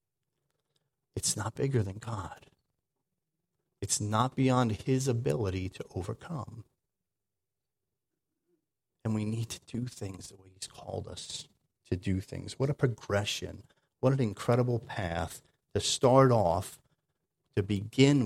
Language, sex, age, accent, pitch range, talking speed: English, male, 50-69, American, 100-135 Hz, 125 wpm